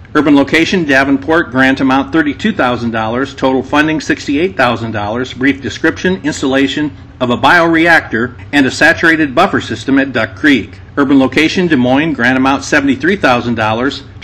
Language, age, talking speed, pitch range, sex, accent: English, 50-69, 125 wpm, 125-155 Hz, male, American